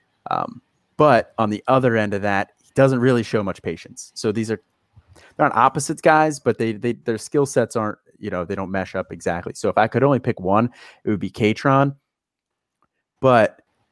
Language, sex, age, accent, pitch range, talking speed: English, male, 30-49, American, 95-115 Hz, 205 wpm